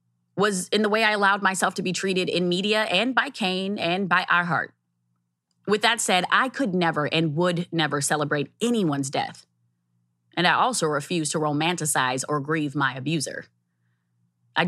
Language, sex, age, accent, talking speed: English, female, 20-39, American, 170 wpm